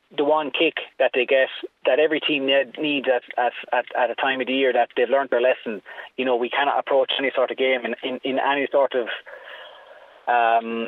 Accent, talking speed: Irish, 215 wpm